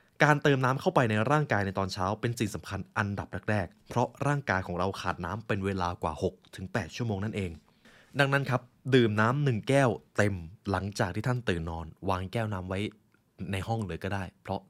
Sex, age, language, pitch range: male, 20-39, Thai, 95-125 Hz